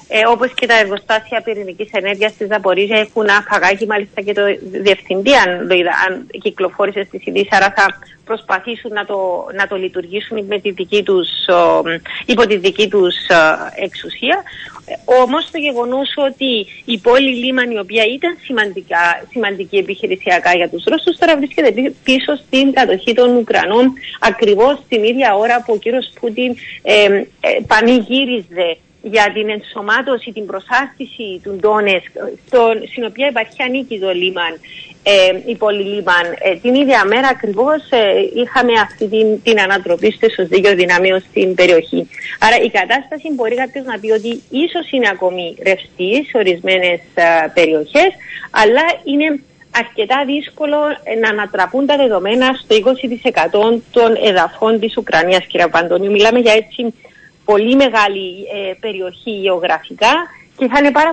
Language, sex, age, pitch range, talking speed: Greek, female, 30-49, 195-255 Hz, 140 wpm